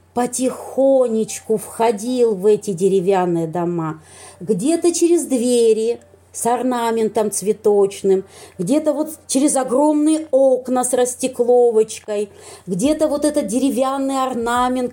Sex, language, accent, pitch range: female, Russian, native, 210-270 Hz